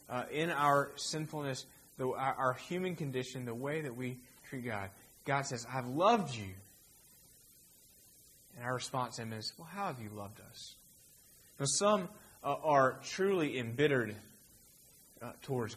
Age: 30-49